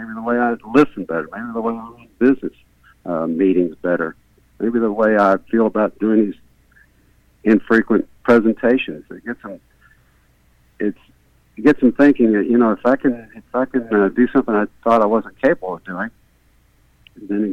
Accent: American